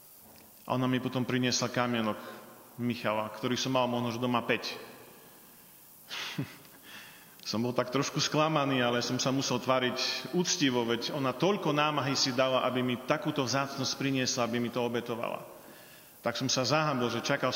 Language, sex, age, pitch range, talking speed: Slovak, male, 40-59, 125-140 Hz, 155 wpm